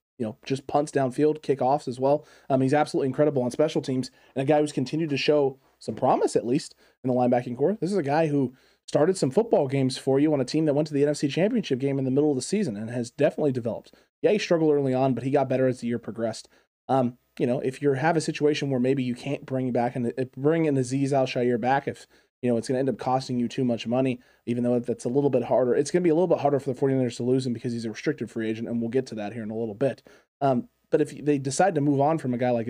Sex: male